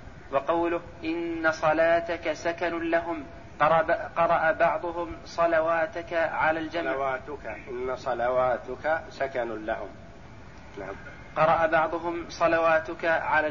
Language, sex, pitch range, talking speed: Arabic, male, 160-170 Hz, 80 wpm